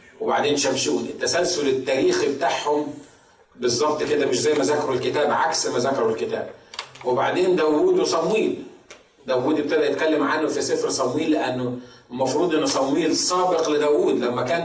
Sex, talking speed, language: male, 140 wpm, Arabic